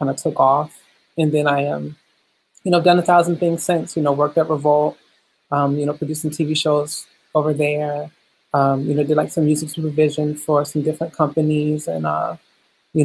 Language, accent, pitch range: English, American, 150-160 Hz